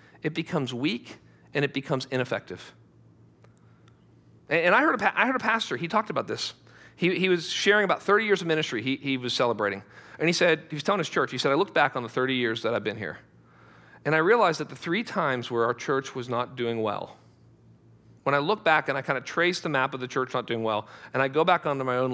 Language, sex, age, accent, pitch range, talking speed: English, male, 40-59, American, 125-190 Hz, 240 wpm